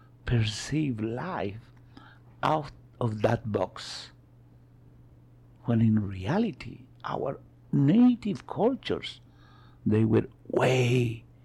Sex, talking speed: male, 80 wpm